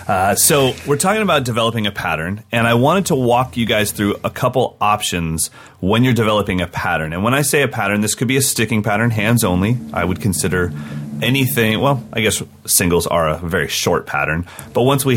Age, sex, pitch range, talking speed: 30-49, male, 90-120 Hz, 215 wpm